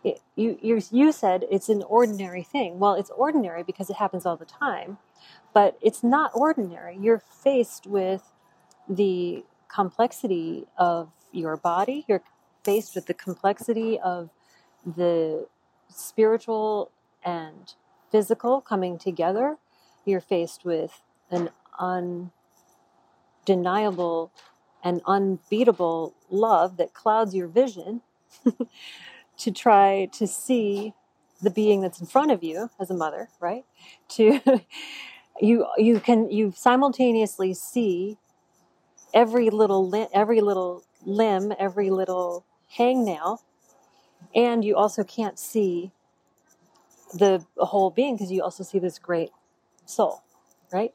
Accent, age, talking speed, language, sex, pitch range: American, 30-49, 120 wpm, English, female, 185-235 Hz